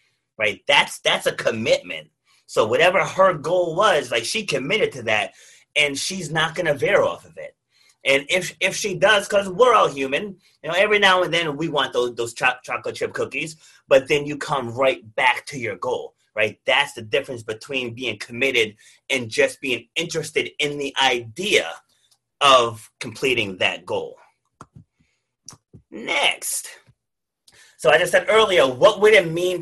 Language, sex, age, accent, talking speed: English, male, 30-49, American, 170 wpm